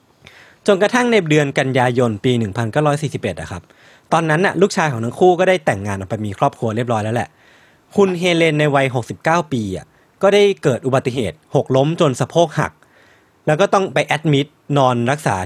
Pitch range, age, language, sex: 115-165 Hz, 20-39, Thai, male